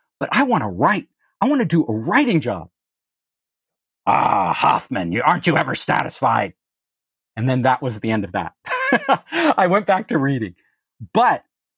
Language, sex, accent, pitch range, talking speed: English, male, American, 125-190 Hz, 175 wpm